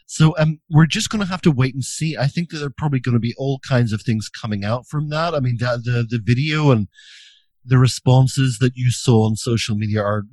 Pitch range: 105-140 Hz